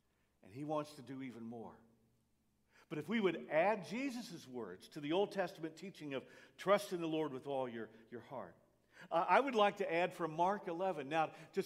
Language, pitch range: English, 160-205 Hz